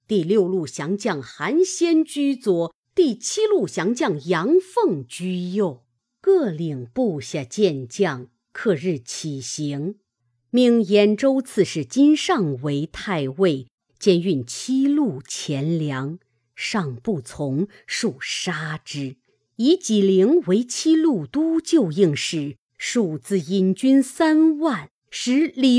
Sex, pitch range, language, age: female, 160-255 Hz, Chinese, 50-69